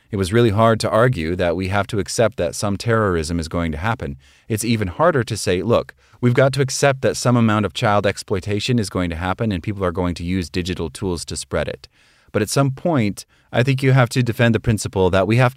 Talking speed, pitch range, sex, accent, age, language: 245 wpm, 90-115 Hz, male, American, 30-49, English